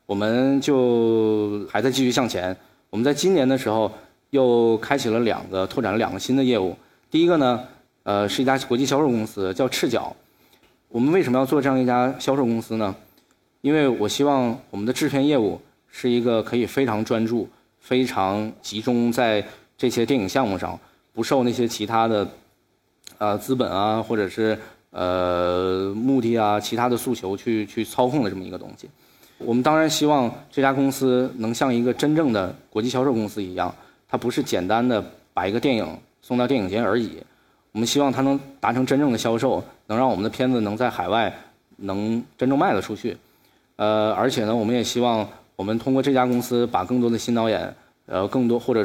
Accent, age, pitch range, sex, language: native, 20-39, 105-130 Hz, male, Chinese